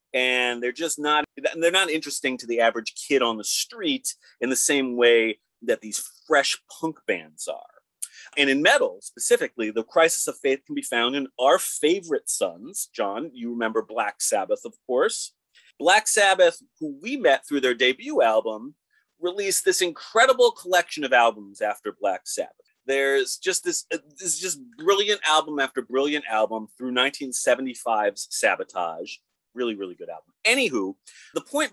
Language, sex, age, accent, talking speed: English, male, 30-49, American, 160 wpm